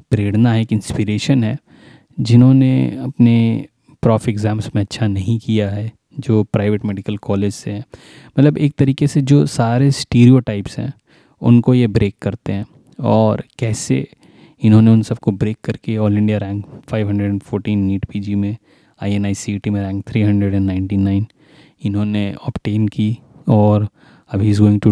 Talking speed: 140 wpm